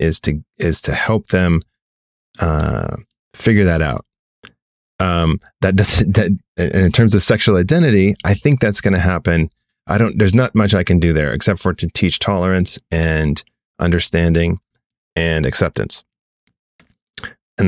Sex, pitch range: male, 85-105 Hz